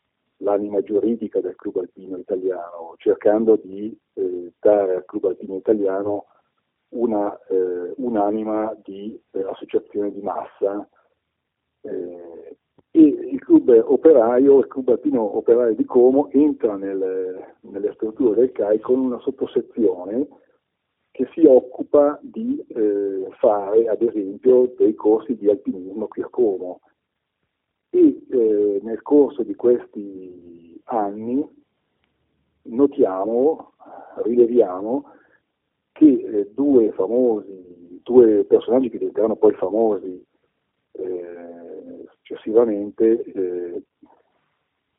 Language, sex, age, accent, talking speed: Italian, male, 50-69, native, 105 wpm